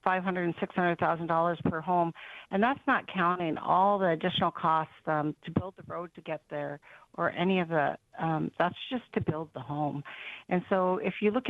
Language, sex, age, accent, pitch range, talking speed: English, female, 50-69, American, 155-190 Hz, 180 wpm